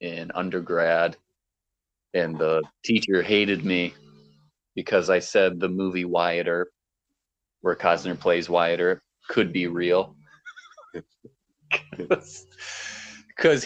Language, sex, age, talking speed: English, male, 30-49, 100 wpm